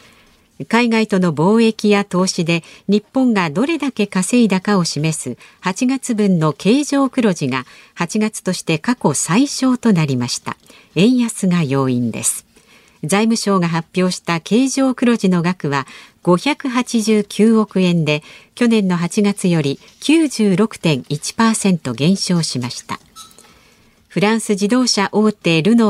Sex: female